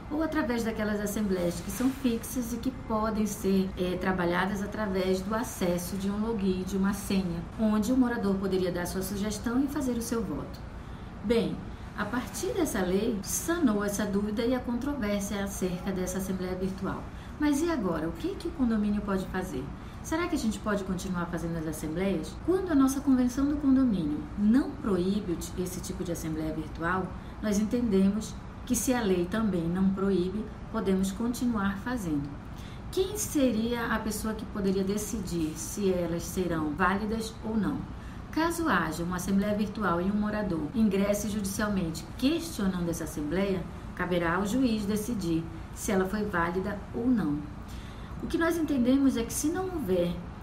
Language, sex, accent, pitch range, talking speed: Portuguese, female, Brazilian, 185-235 Hz, 165 wpm